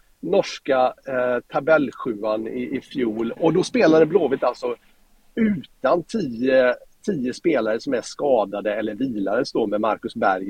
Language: Swedish